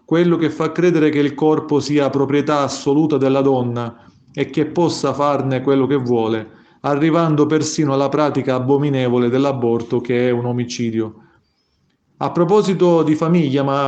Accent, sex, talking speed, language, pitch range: native, male, 145 wpm, Italian, 125-150 Hz